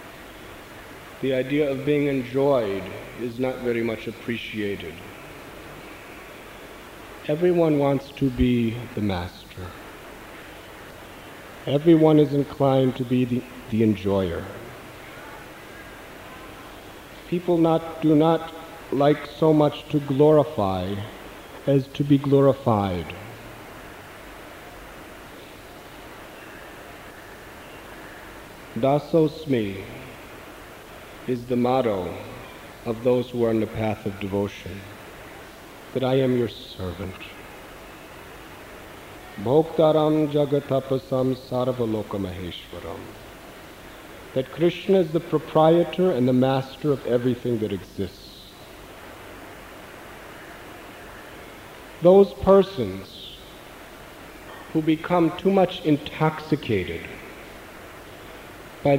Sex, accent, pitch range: male, American, 115-155 Hz